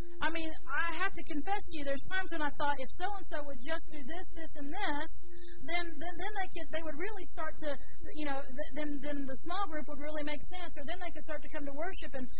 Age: 40-59